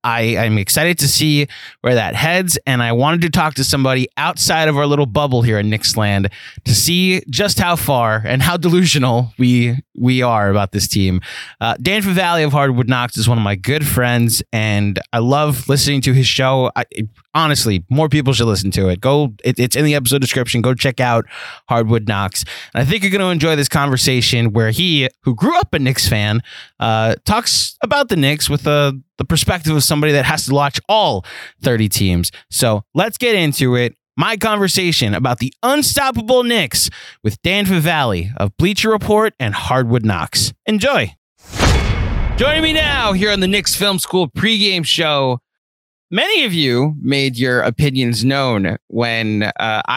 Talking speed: 185 wpm